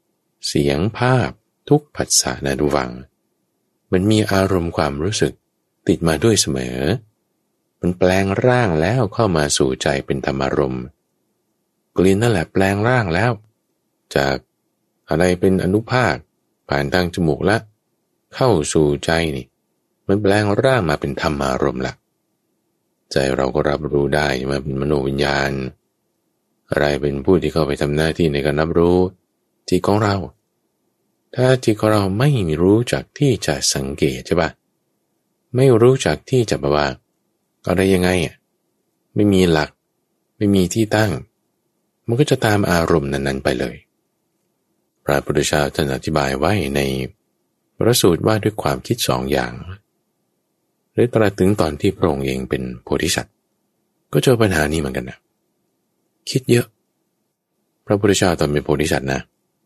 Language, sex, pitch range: English, male, 70-105 Hz